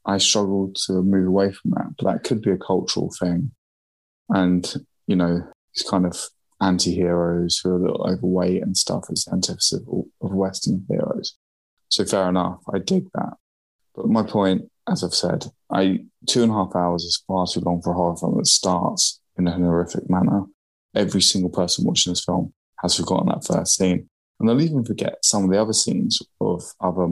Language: English